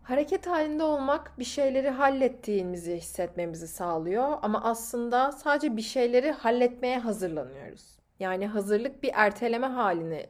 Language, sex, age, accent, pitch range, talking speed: Turkish, female, 30-49, native, 180-250 Hz, 115 wpm